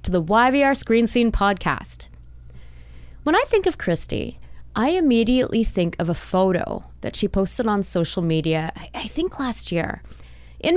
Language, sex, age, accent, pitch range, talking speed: English, female, 20-39, American, 160-235 Hz, 155 wpm